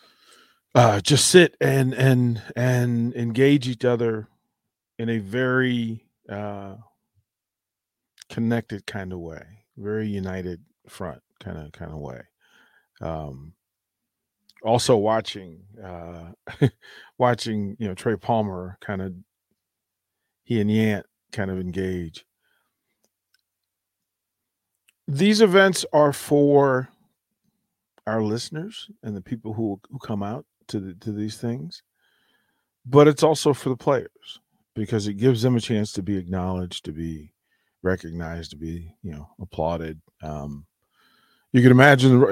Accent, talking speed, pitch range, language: American, 125 wpm, 95-130 Hz, English